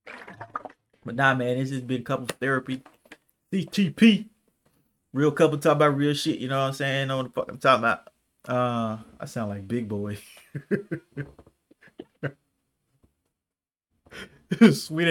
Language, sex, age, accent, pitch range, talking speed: English, male, 20-39, American, 125-175 Hz, 140 wpm